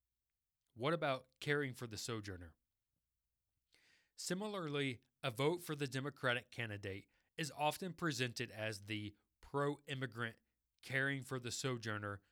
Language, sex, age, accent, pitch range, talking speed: English, male, 30-49, American, 115-145 Hz, 110 wpm